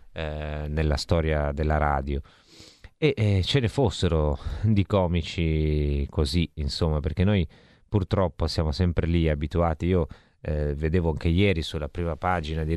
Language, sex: Italian, male